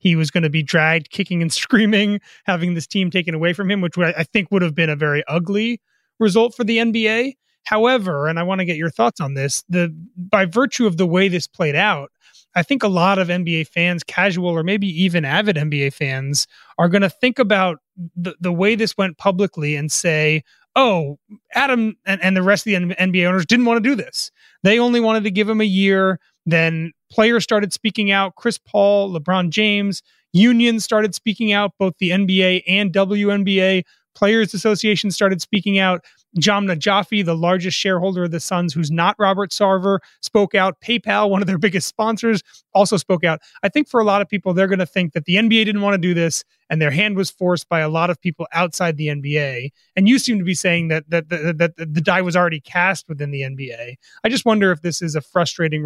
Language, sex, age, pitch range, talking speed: English, male, 30-49, 165-205 Hz, 220 wpm